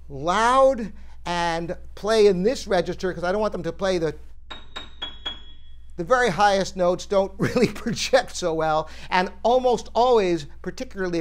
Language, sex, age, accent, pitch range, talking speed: English, male, 50-69, American, 165-215 Hz, 145 wpm